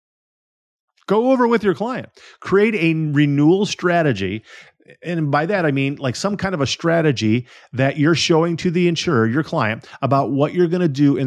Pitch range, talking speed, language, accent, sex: 135-180 Hz, 185 wpm, English, American, male